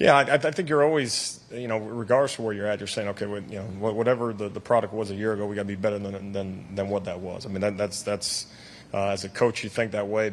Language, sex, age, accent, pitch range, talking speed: English, male, 30-49, American, 100-115 Hz, 290 wpm